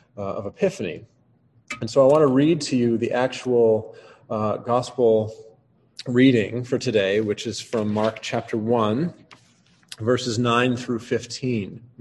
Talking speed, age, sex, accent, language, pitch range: 140 wpm, 40-59, male, American, English, 110-135 Hz